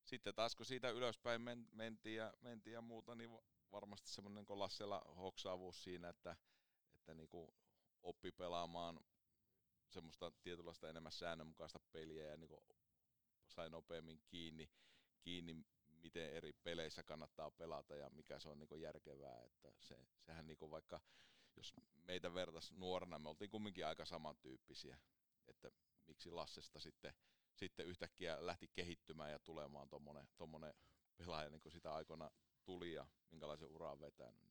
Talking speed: 135 wpm